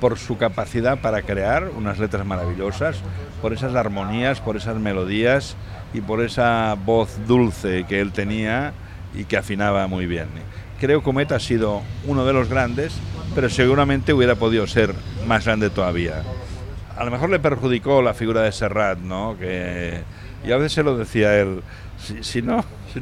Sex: male